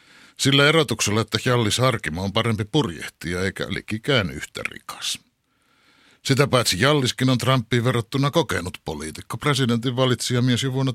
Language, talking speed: Finnish, 125 wpm